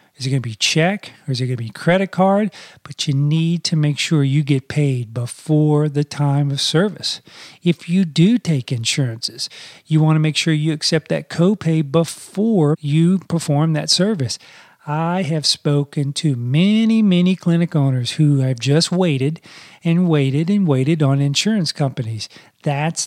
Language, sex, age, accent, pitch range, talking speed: English, male, 40-59, American, 140-165 Hz, 165 wpm